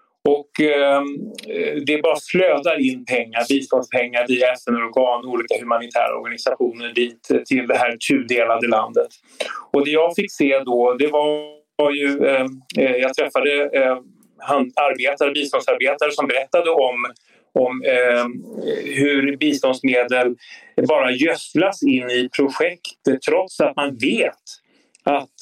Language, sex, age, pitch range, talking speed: Swedish, male, 30-49, 125-150 Hz, 125 wpm